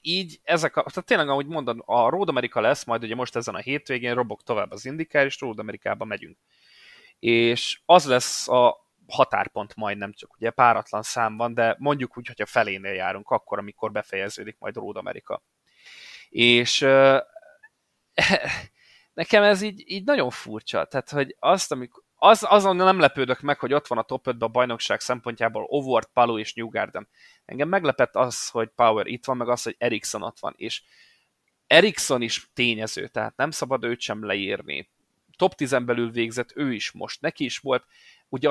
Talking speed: 170 wpm